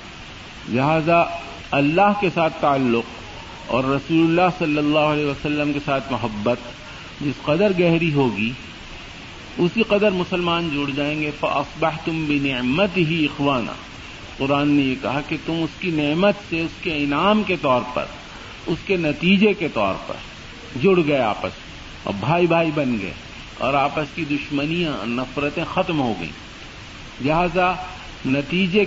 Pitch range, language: 135-175 Hz, Urdu